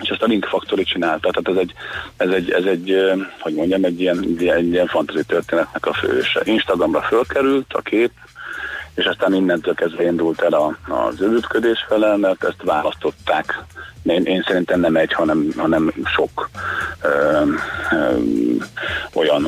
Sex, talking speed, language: male, 155 wpm, Hungarian